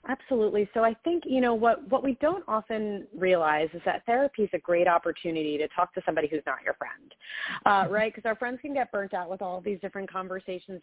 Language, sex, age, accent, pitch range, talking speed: English, female, 30-49, American, 160-195 Hz, 235 wpm